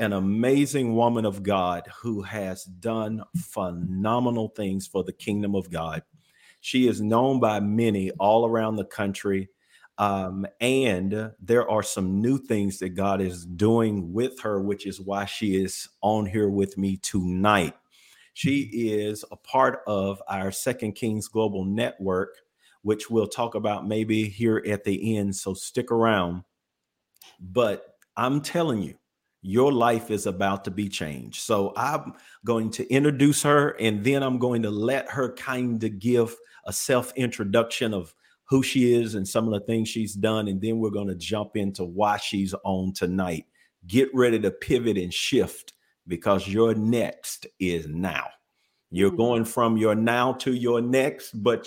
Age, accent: 40-59, American